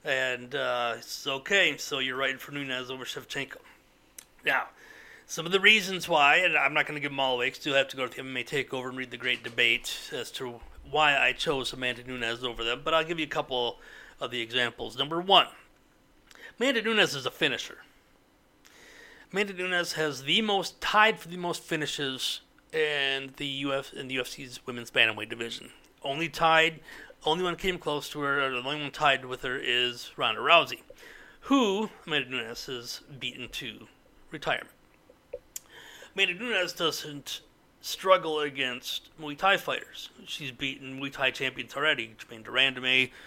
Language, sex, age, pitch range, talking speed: English, male, 30-49, 130-180 Hz, 170 wpm